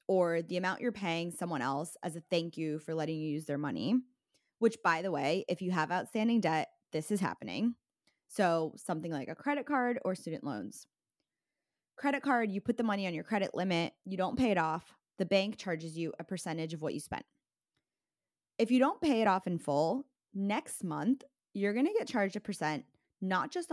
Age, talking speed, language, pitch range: 20-39, 205 wpm, English, 170-240 Hz